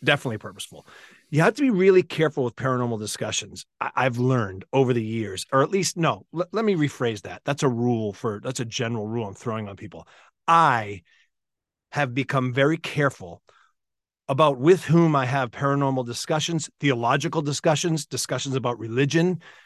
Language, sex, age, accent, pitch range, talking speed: English, male, 40-59, American, 120-165 Hz, 160 wpm